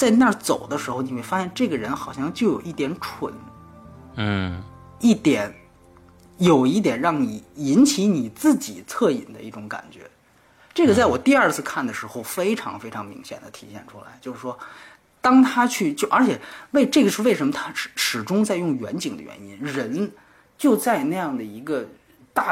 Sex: male